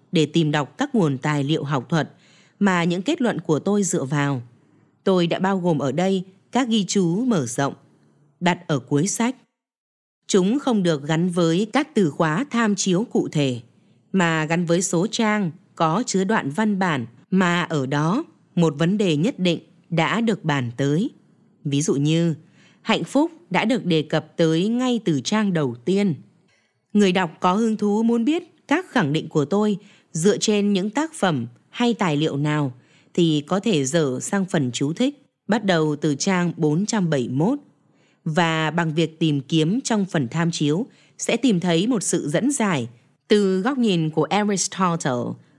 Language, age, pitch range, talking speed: Vietnamese, 20-39, 155-215 Hz, 180 wpm